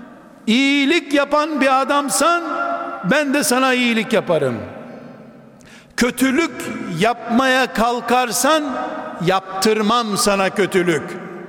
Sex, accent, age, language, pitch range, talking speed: male, native, 60-79, Turkish, 225-275 Hz, 80 wpm